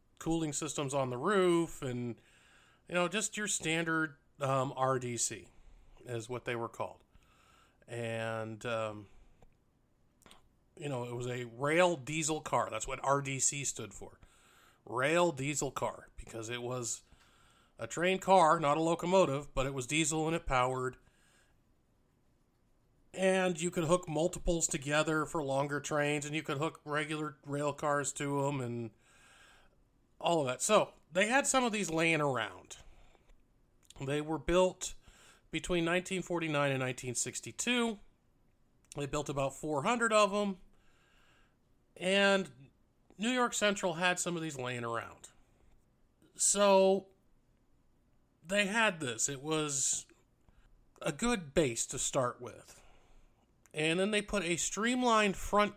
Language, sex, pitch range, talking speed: English, male, 125-180 Hz, 135 wpm